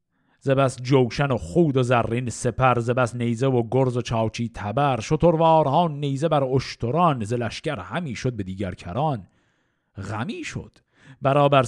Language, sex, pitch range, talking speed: Persian, male, 115-145 Hz, 145 wpm